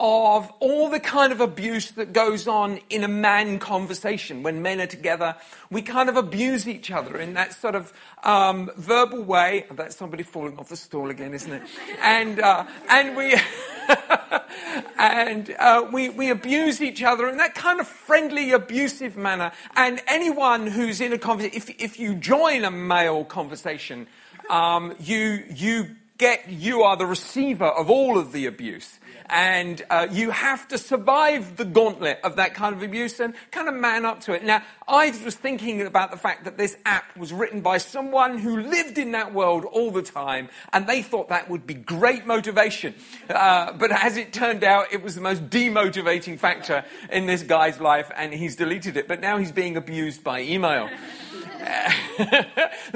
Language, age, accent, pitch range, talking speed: English, 50-69, British, 180-245 Hz, 180 wpm